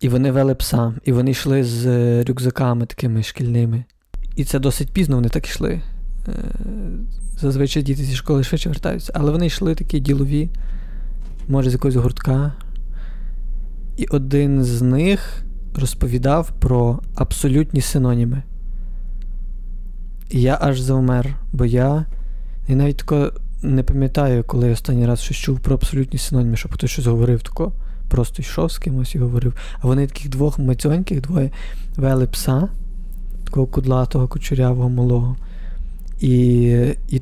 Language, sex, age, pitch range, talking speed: Ukrainian, male, 20-39, 125-155 Hz, 135 wpm